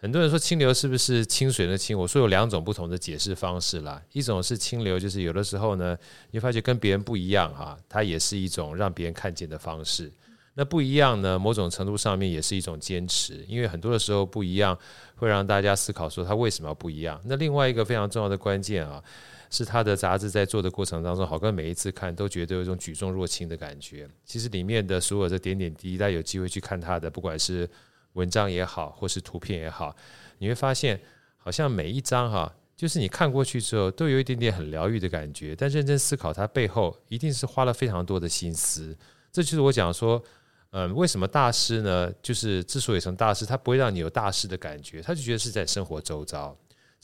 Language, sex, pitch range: Chinese, male, 90-120 Hz